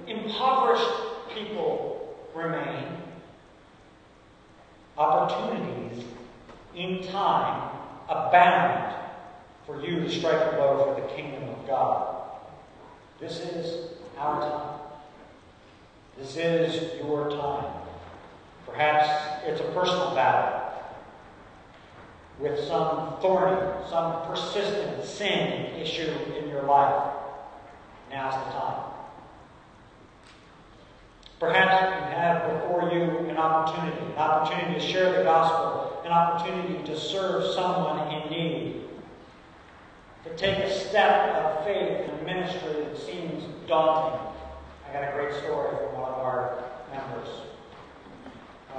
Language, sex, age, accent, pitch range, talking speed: English, male, 50-69, American, 150-190 Hz, 105 wpm